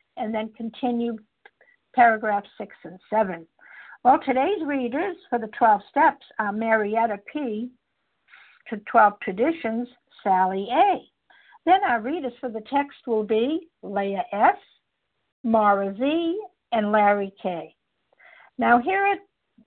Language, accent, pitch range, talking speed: English, American, 220-285 Hz, 120 wpm